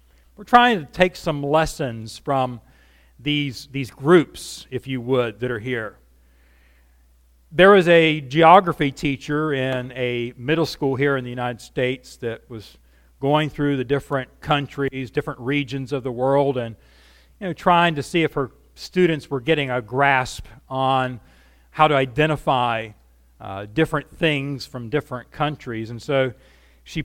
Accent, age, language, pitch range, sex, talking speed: American, 40-59, English, 110-150 Hz, male, 150 wpm